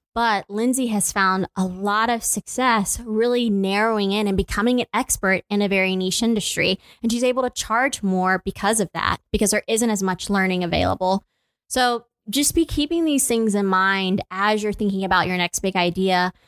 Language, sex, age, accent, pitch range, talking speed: English, female, 20-39, American, 185-230 Hz, 190 wpm